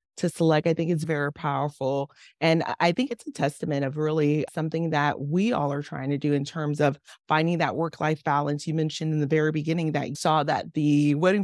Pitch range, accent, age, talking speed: 150-175 Hz, American, 30-49, 220 wpm